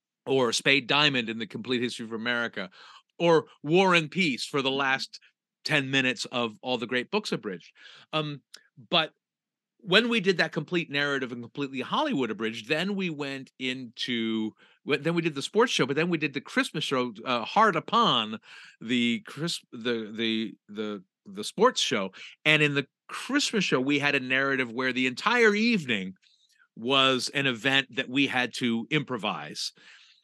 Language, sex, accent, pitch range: English, male, American, 120-160 Hz